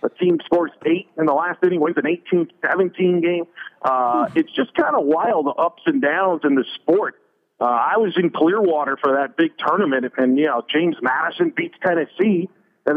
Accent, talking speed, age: American, 190 wpm, 40-59